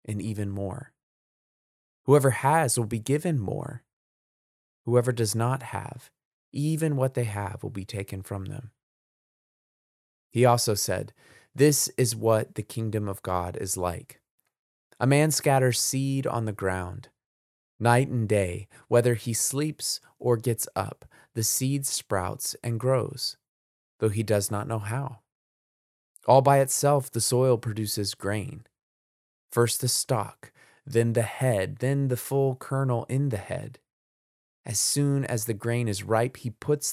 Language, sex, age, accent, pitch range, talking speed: English, male, 20-39, American, 105-135 Hz, 145 wpm